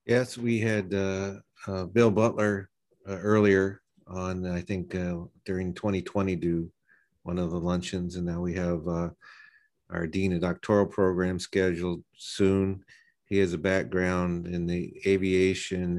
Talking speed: 145 wpm